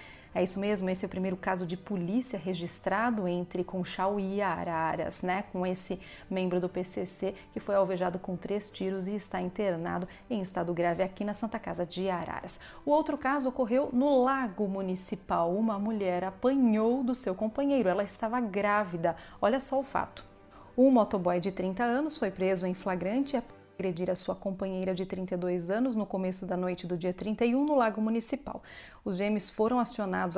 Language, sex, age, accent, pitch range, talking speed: Portuguese, female, 30-49, Brazilian, 185-240 Hz, 180 wpm